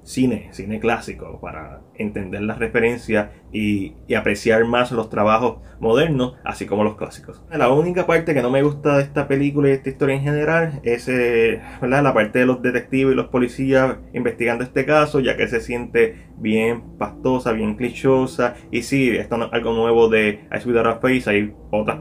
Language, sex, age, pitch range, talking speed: Spanish, male, 20-39, 110-135 Hz, 185 wpm